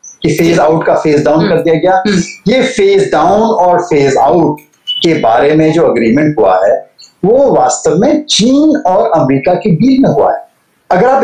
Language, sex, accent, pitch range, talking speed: English, male, Indian, 170-235 Hz, 185 wpm